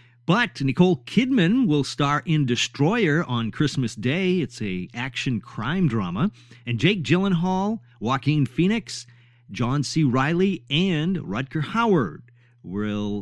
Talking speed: 125 wpm